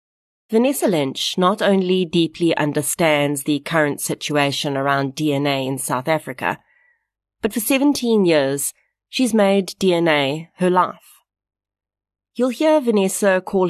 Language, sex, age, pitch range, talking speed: English, female, 30-49, 140-180 Hz, 120 wpm